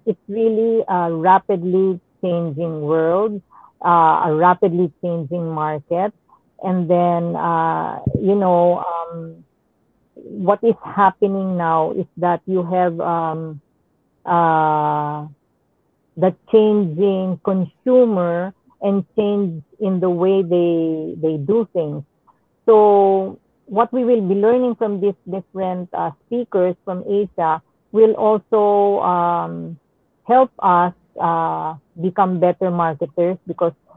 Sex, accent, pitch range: female, Filipino, 165-195 Hz